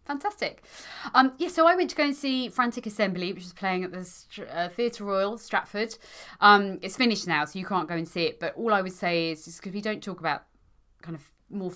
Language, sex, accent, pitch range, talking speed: English, female, British, 145-200 Hz, 240 wpm